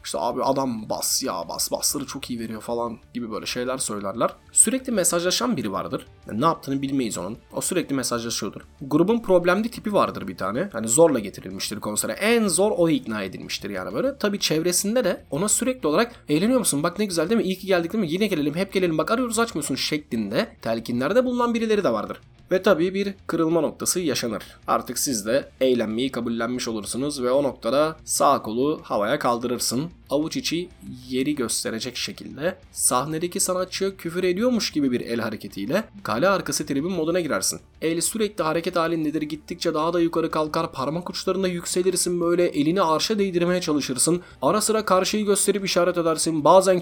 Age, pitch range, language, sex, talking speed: 30-49, 130-185 Hz, Turkish, male, 175 wpm